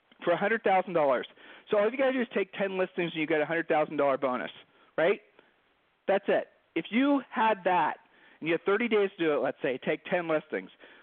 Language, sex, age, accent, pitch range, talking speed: English, male, 40-59, American, 160-230 Hz, 210 wpm